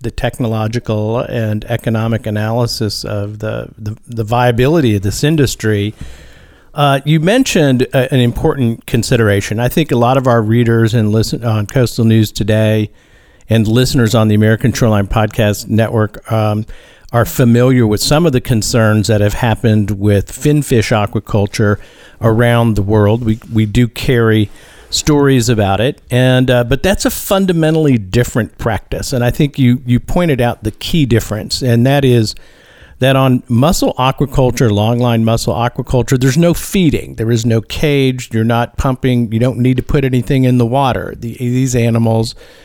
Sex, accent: male, American